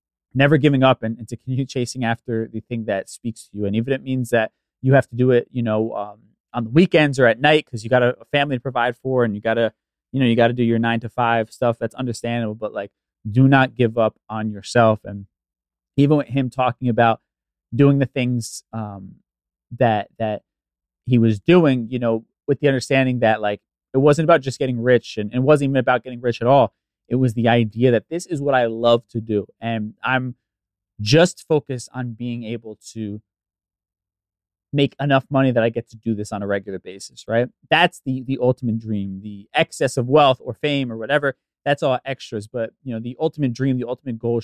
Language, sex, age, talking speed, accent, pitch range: English, male, 30-49, 220 wpm, American, 105-130 Hz